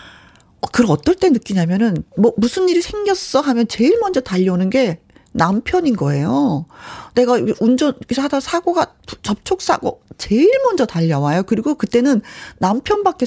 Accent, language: native, Korean